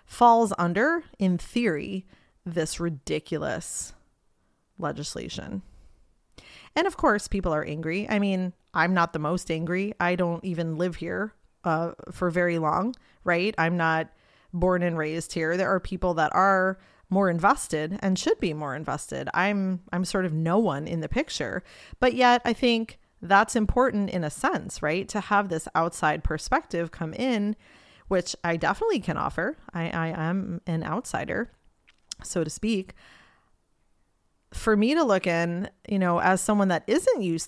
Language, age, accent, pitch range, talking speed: English, 30-49, American, 160-195 Hz, 160 wpm